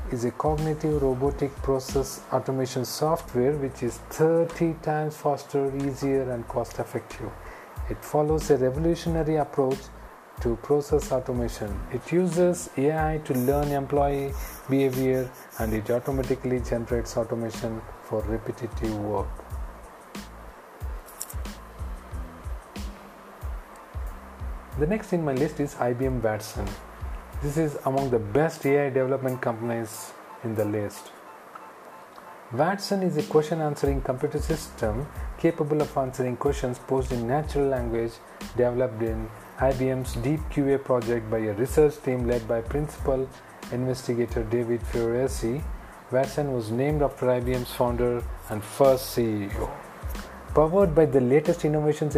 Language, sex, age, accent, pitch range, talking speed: English, male, 40-59, Indian, 120-145 Hz, 120 wpm